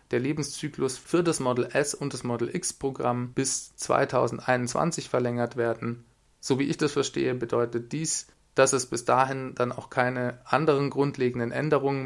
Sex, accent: male, German